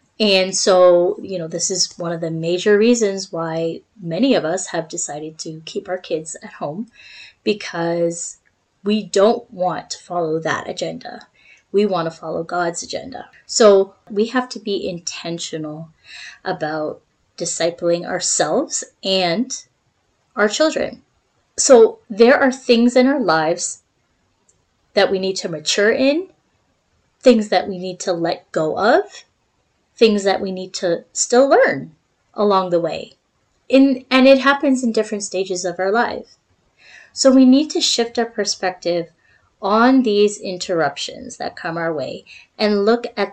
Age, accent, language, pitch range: 20-39, American, English, 175-245 Hz